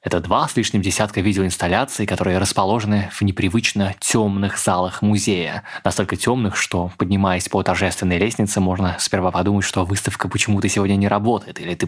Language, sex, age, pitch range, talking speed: Russian, male, 20-39, 100-125 Hz, 155 wpm